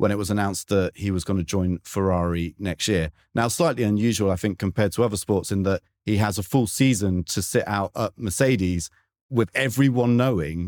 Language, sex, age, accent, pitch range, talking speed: English, male, 30-49, British, 95-115 Hz, 200 wpm